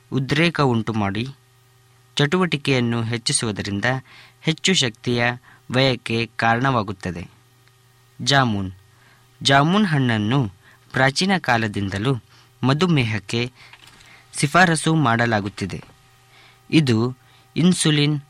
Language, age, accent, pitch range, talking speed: Kannada, 20-39, native, 115-140 Hz, 60 wpm